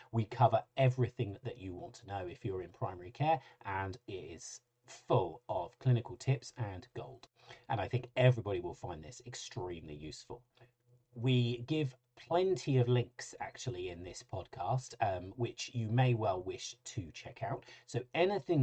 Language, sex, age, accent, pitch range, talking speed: English, male, 40-59, British, 110-130 Hz, 165 wpm